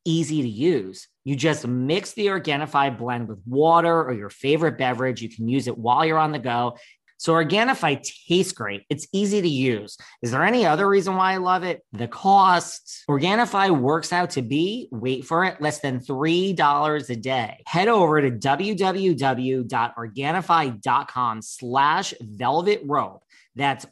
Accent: American